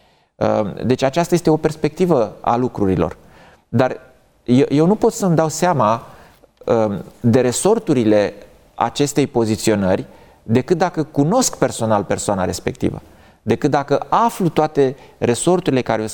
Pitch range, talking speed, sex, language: 110-145 Hz, 115 wpm, male, Romanian